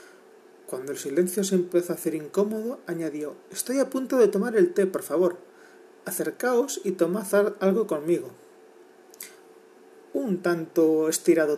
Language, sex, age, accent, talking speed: Spanish, male, 40-59, Spanish, 135 wpm